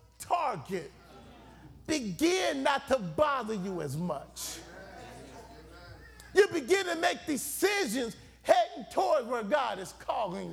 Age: 40-59